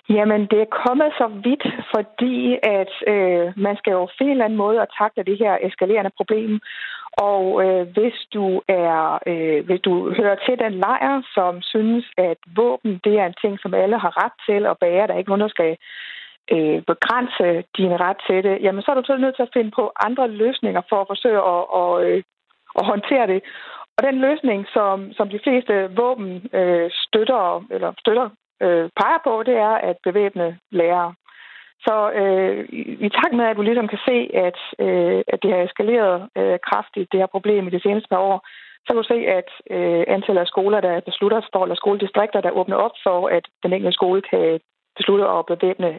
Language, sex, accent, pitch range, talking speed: Danish, female, native, 180-225 Hz, 200 wpm